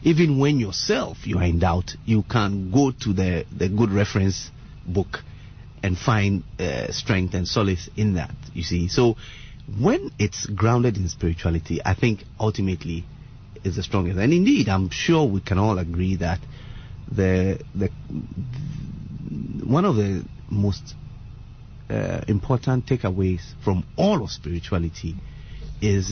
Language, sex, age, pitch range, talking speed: English, male, 30-49, 90-125 Hz, 140 wpm